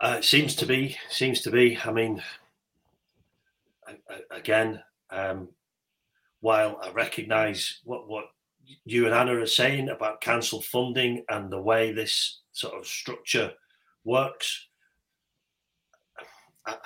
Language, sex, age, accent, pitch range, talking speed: English, male, 40-59, British, 110-130 Hz, 130 wpm